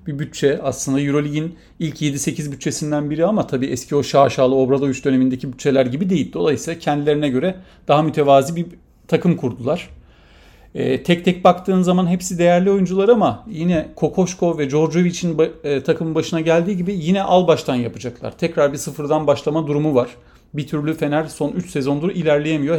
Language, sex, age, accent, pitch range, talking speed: Turkish, male, 40-59, native, 140-175 Hz, 160 wpm